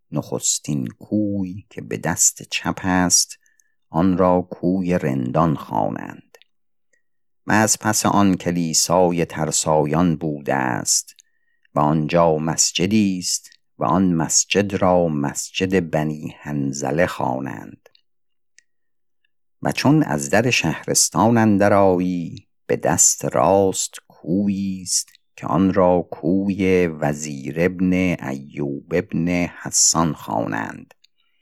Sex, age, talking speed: male, 50-69, 100 wpm